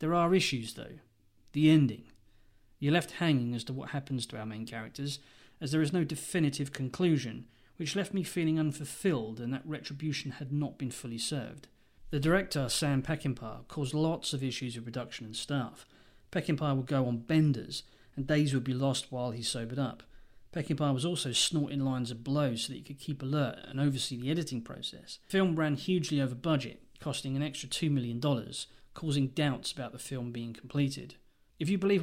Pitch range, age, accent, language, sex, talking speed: 125-155 Hz, 30-49, British, English, male, 190 wpm